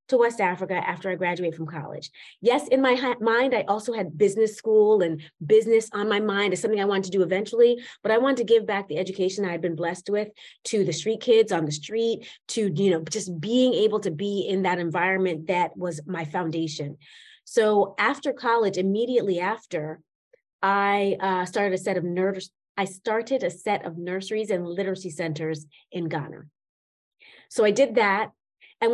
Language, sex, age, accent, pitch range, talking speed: English, female, 30-49, American, 175-215 Hz, 195 wpm